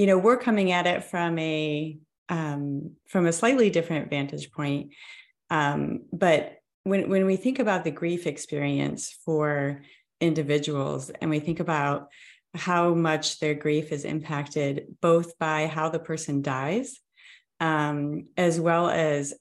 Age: 30-49